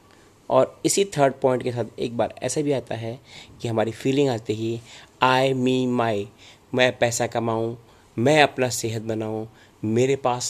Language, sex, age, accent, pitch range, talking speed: Hindi, male, 30-49, native, 105-130 Hz, 165 wpm